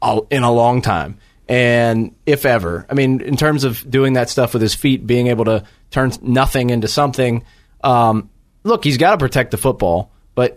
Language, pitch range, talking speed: English, 115-140 Hz, 195 wpm